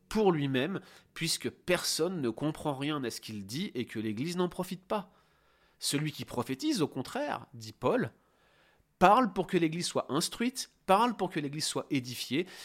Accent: French